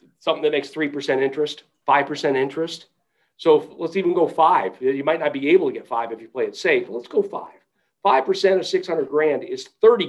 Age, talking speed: 50-69, 210 wpm